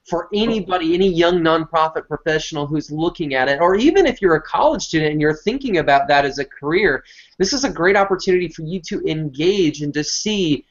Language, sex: English, male